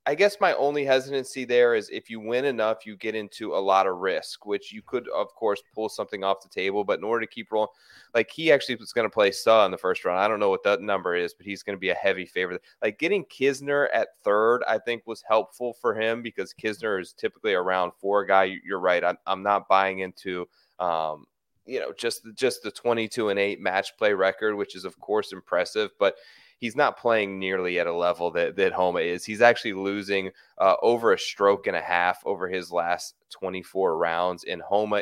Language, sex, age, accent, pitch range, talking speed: English, male, 30-49, American, 95-120 Hz, 225 wpm